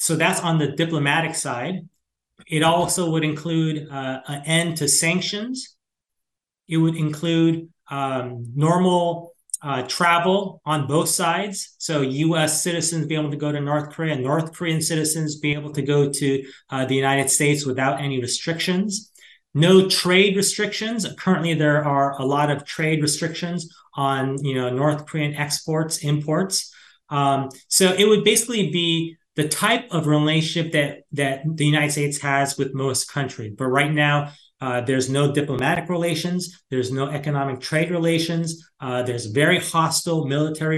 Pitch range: 145-170 Hz